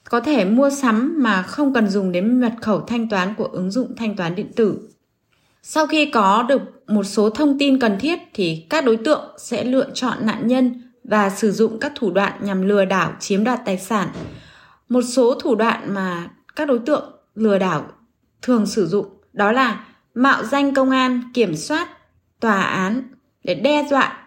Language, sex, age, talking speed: Vietnamese, female, 20-39, 195 wpm